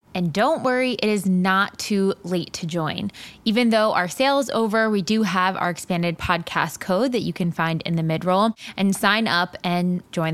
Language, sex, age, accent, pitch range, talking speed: English, female, 20-39, American, 165-195 Hz, 205 wpm